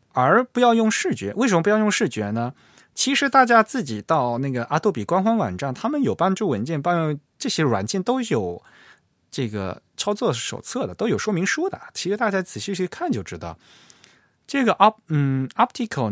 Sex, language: male, Chinese